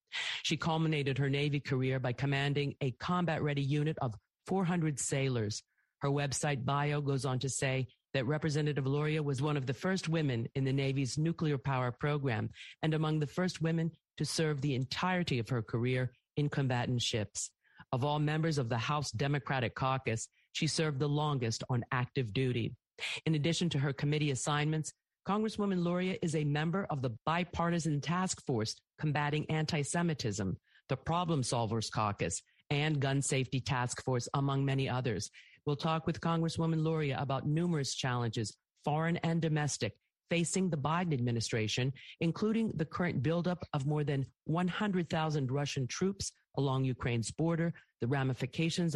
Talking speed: 155 wpm